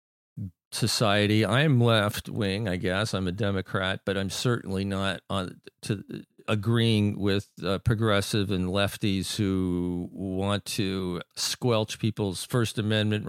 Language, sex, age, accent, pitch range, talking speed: English, male, 50-69, American, 95-125 Hz, 130 wpm